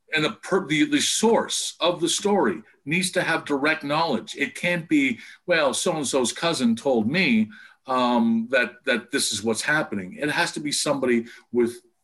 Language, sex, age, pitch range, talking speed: English, male, 50-69, 125-210 Hz, 185 wpm